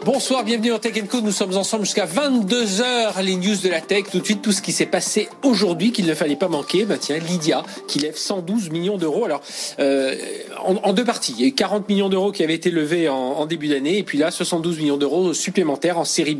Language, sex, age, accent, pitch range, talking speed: French, male, 40-59, French, 145-195 Hz, 255 wpm